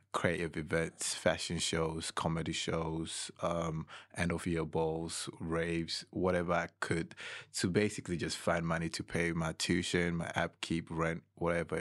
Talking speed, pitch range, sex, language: 145 wpm, 80-85 Hz, male, English